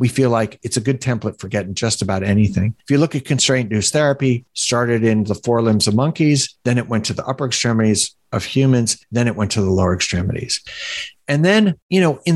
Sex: male